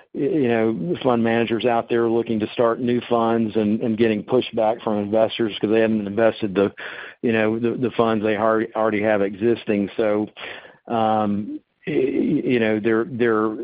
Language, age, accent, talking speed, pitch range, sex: English, 50-69, American, 165 wpm, 100-115 Hz, male